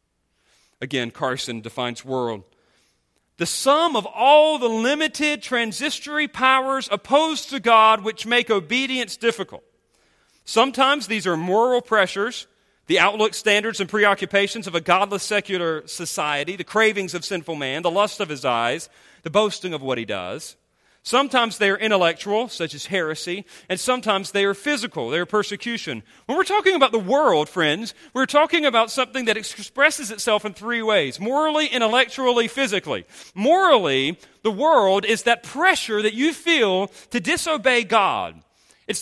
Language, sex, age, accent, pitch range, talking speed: English, male, 40-59, American, 190-265 Hz, 150 wpm